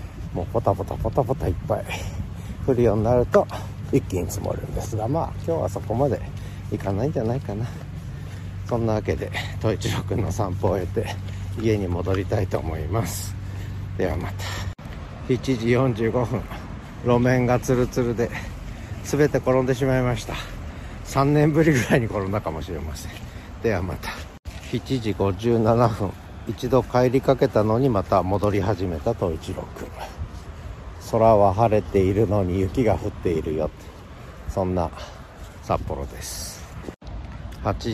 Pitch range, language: 95-120 Hz, Japanese